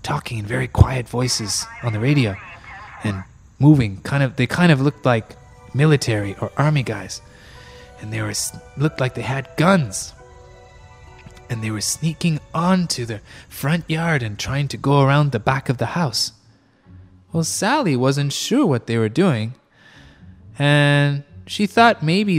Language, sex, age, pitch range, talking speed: English, male, 20-39, 110-150 Hz, 160 wpm